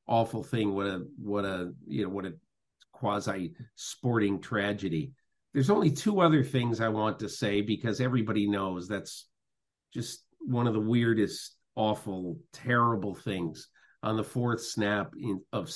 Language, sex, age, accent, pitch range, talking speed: English, male, 50-69, American, 100-125 Hz, 145 wpm